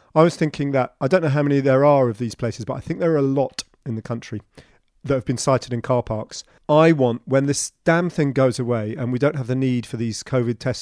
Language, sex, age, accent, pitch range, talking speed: English, male, 40-59, British, 125-160 Hz, 270 wpm